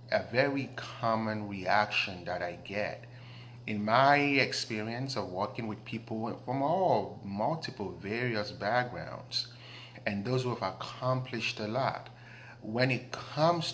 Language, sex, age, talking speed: English, male, 30-49, 125 wpm